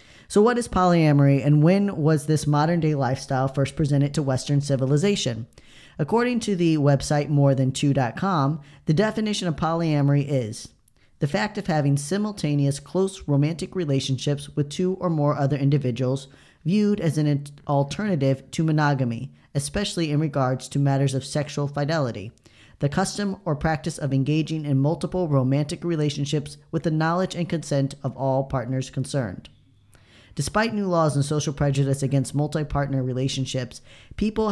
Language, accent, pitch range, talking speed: English, American, 135-160 Hz, 145 wpm